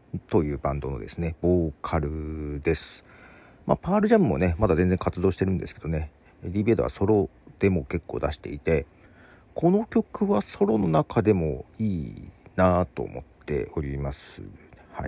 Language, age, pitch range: Japanese, 40-59, 80-110 Hz